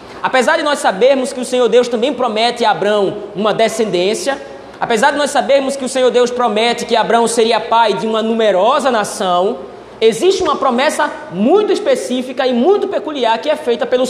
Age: 20-39